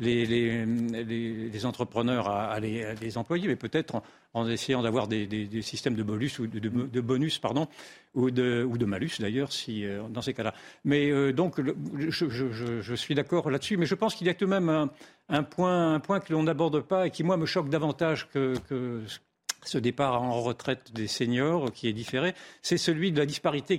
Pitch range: 120-160 Hz